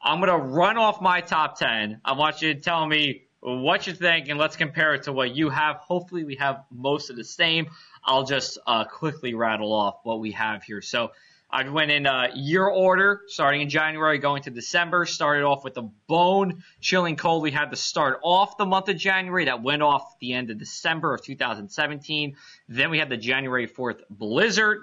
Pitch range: 135-180 Hz